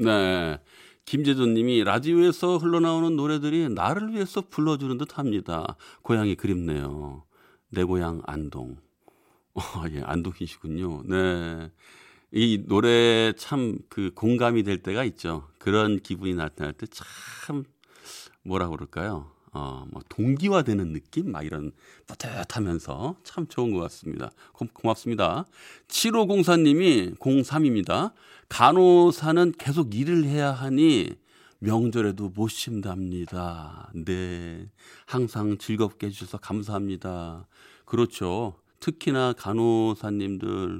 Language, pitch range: Korean, 95-145 Hz